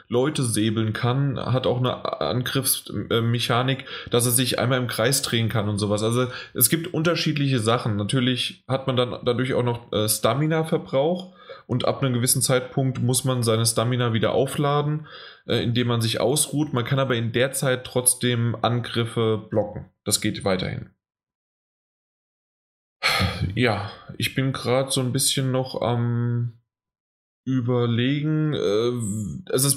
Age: 10-29